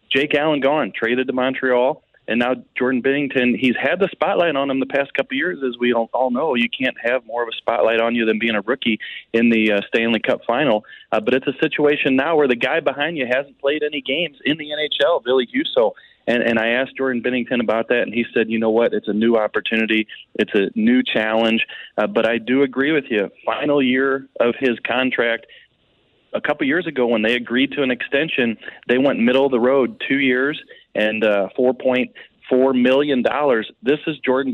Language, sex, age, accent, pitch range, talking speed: English, male, 30-49, American, 115-140 Hz, 215 wpm